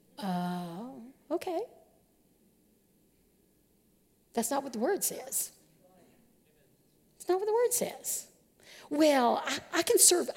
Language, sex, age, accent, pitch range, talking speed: English, female, 50-69, American, 190-270 Hz, 115 wpm